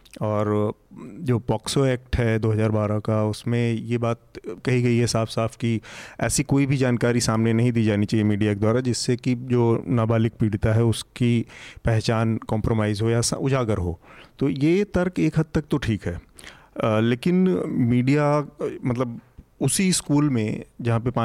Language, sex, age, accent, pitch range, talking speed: Hindi, male, 30-49, native, 110-135 Hz, 165 wpm